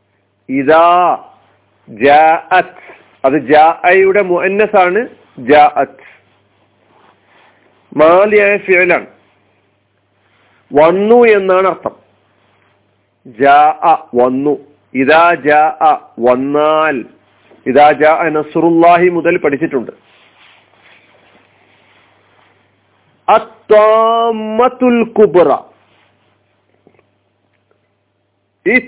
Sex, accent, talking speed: male, native, 55 wpm